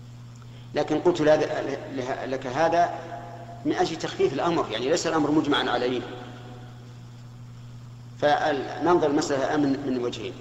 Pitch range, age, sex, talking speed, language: 120-145 Hz, 50-69, male, 105 wpm, Arabic